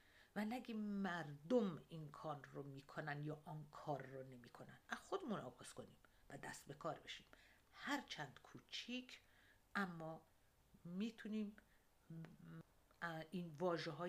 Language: Persian